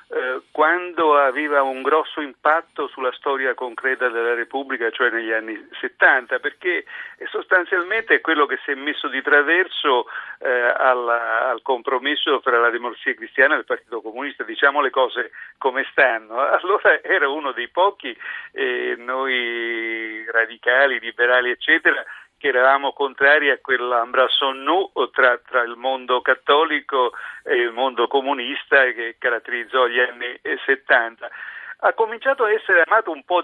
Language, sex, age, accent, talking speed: Italian, male, 50-69, native, 135 wpm